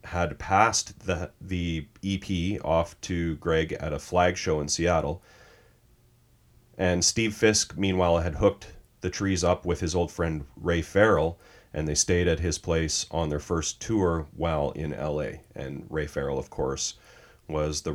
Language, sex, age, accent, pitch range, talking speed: English, male, 30-49, American, 80-100 Hz, 165 wpm